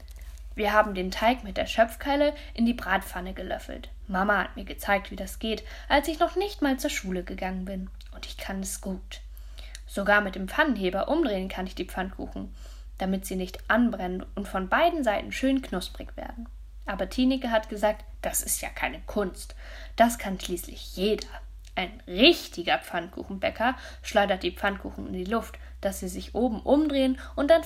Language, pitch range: German, 185-240 Hz